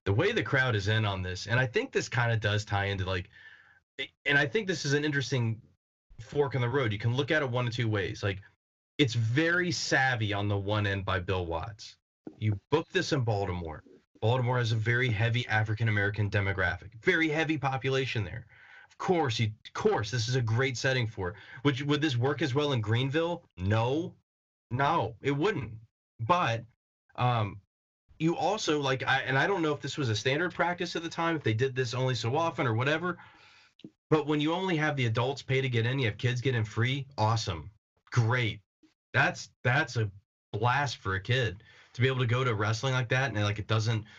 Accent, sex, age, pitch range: American, male, 30-49, 105-140 Hz